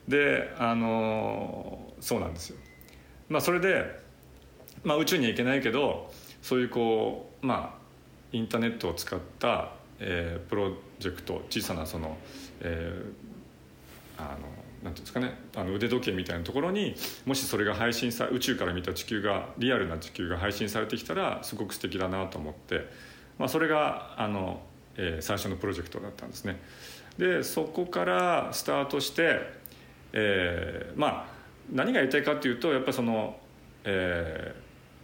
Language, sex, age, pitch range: Japanese, male, 40-59, 85-125 Hz